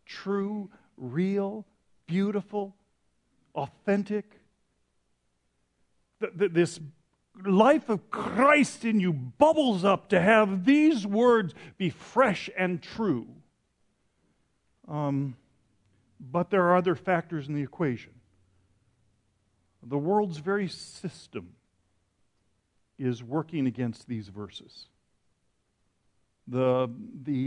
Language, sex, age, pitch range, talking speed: English, male, 50-69, 125-195 Hz, 90 wpm